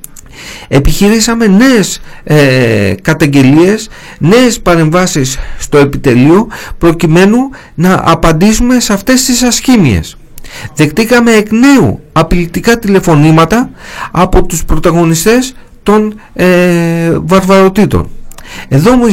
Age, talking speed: 50-69, 90 wpm